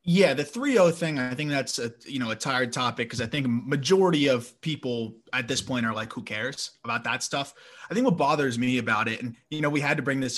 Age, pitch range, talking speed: 30-49, 125-165 Hz, 255 wpm